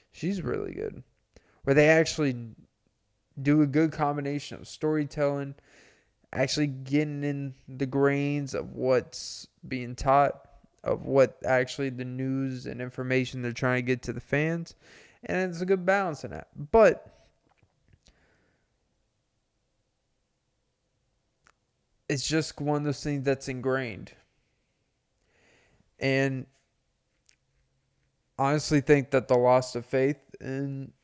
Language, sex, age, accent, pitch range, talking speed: English, male, 20-39, American, 130-150 Hz, 120 wpm